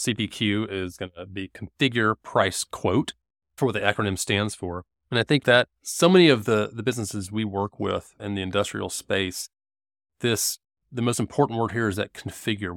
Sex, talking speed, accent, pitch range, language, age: male, 190 wpm, American, 100-125 Hz, English, 30-49